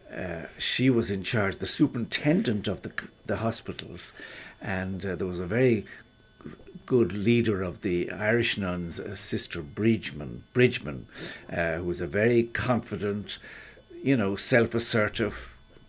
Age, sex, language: 60-79, male, English